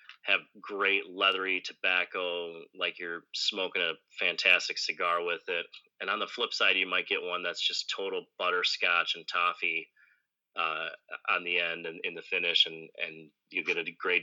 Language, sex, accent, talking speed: English, male, American, 175 wpm